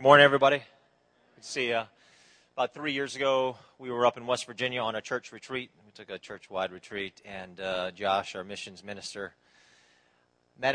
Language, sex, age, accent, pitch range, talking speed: English, male, 40-59, American, 80-115 Hz, 185 wpm